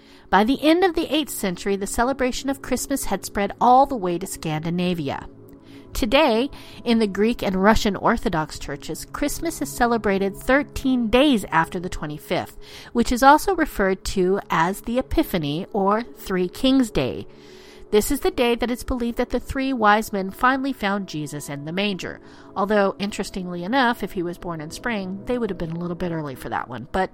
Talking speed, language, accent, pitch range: 190 wpm, English, American, 175-250 Hz